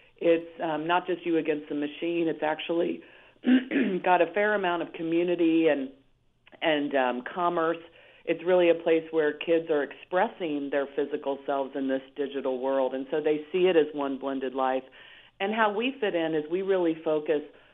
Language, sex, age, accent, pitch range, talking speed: English, female, 40-59, American, 140-165 Hz, 180 wpm